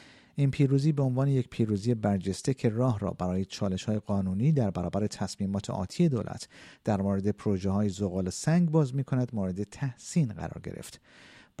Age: 50-69